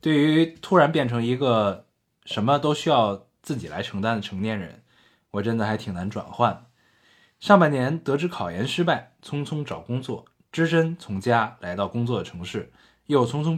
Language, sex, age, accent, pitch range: Chinese, male, 20-39, native, 100-145 Hz